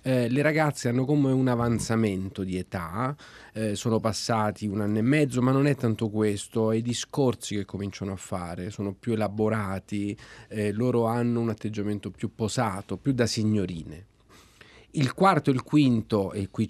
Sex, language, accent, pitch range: male, Italian, native, 100-120 Hz